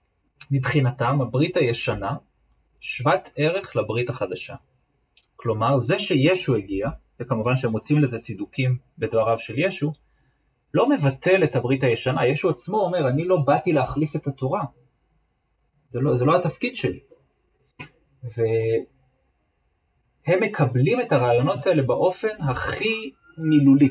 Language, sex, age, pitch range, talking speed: Hebrew, male, 30-49, 120-155 Hz, 120 wpm